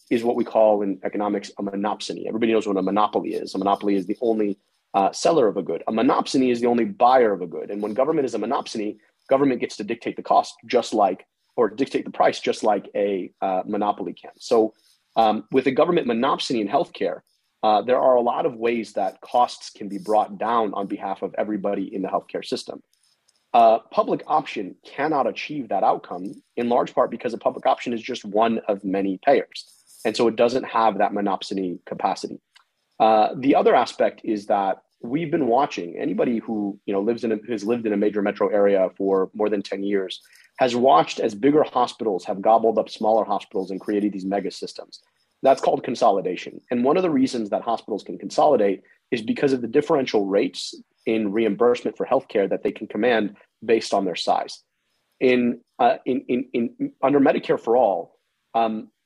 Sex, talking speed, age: male, 200 wpm, 30-49